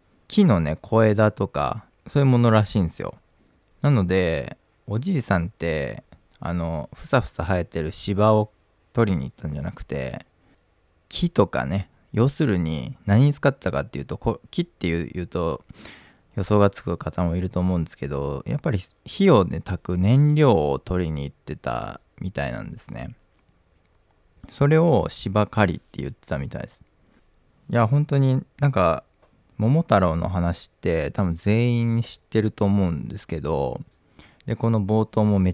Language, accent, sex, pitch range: Japanese, native, male, 85-110 Hz